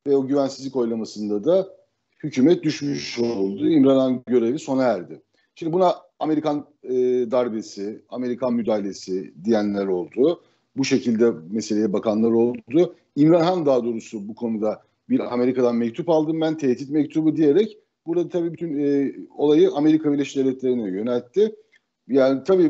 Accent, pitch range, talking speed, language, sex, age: native, 115-160 Hz, 135 wpm, Turkish, male, 50-69